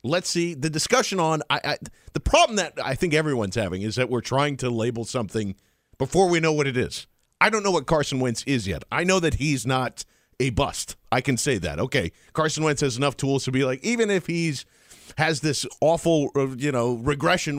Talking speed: 220 wpm